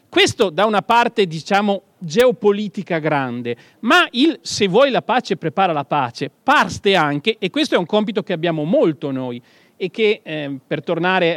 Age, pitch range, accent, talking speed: 40-59, 160-210 Hz, native, 170 wpm